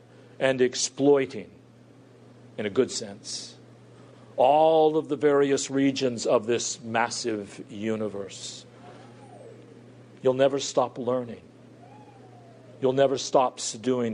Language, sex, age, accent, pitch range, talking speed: English, male, 50-69, American, 115-140 Hz, 100 wpm